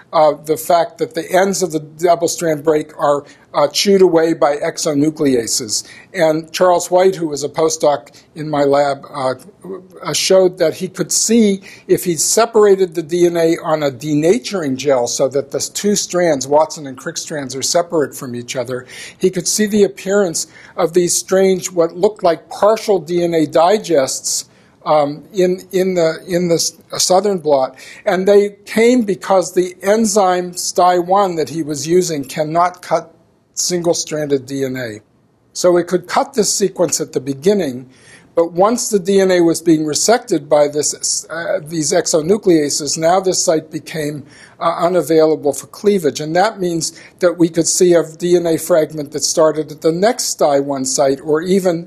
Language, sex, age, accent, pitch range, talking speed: English, male, 50-69, American, 145-180 Hz, 165 wpm